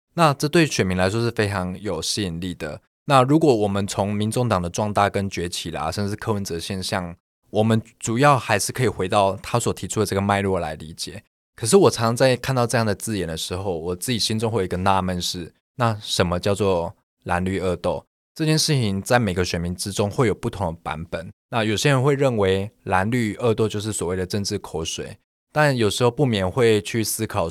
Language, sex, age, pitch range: Chinese, male, 20-39, 90-115 Hz